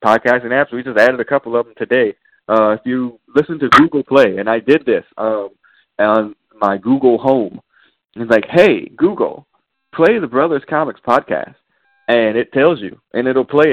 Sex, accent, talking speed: male, American, 190 wpm